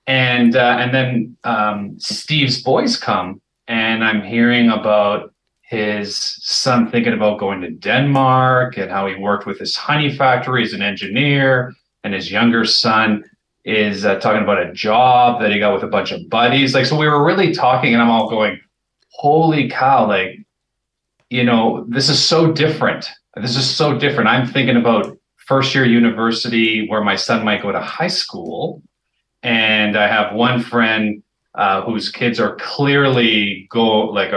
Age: 30-49